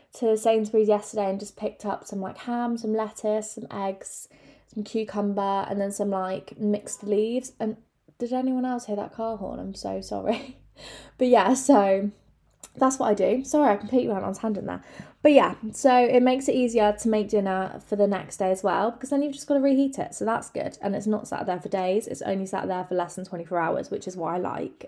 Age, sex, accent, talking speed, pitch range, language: 20-39, female, British, 235 wpm, 195-245 Hz, English